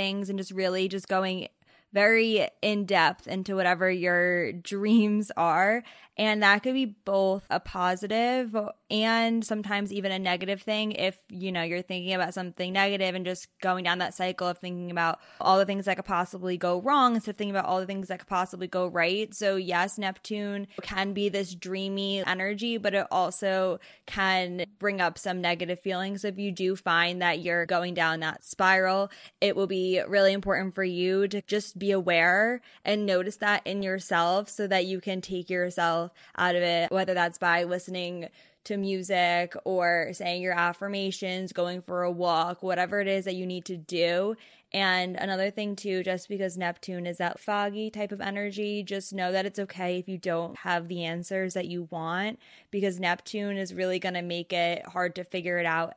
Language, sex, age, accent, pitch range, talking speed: English, female, 20-39, American, 175-200 Hz, 190 wpm